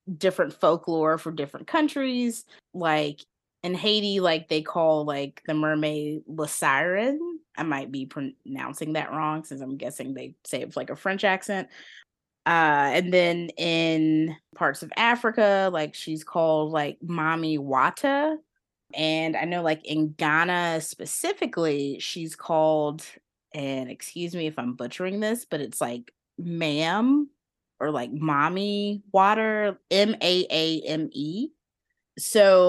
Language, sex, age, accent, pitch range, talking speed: English, female, 20-39, American, 150-185 Hz, 130 wpm